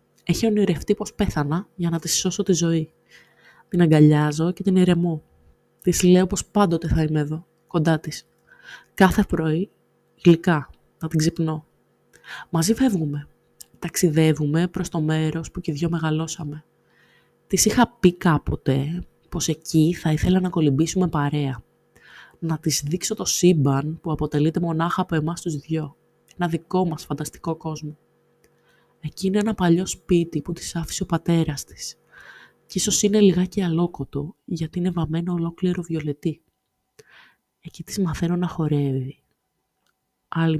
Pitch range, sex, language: 155-185 Hz, female, Greek